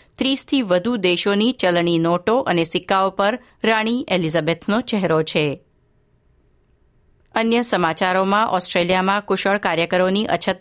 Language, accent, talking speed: Gujarati, native, 105 wpm